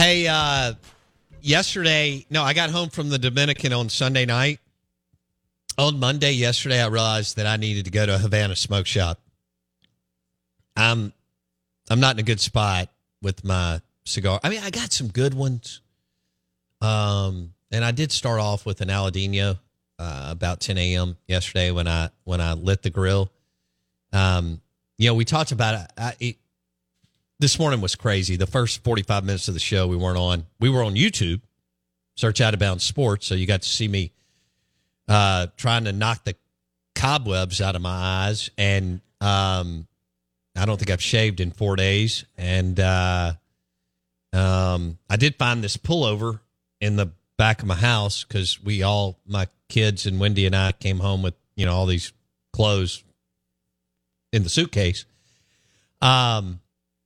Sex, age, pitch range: male, 40-59, 90-115 Hz